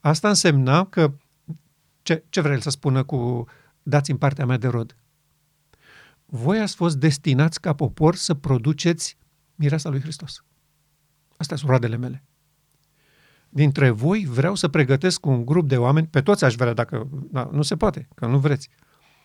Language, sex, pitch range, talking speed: Romanian, male, 140-165 Hz, 160 wpm